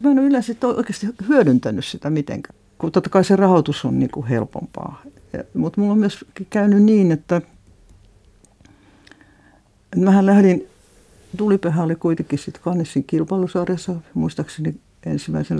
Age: 60-79